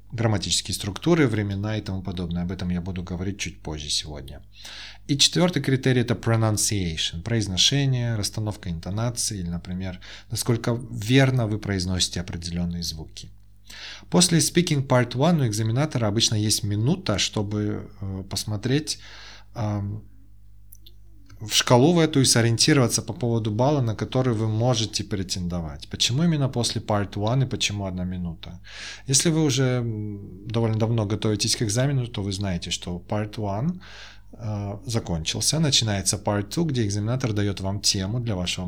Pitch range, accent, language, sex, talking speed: 95-120 Hz, native, Russian, male, 140 wpm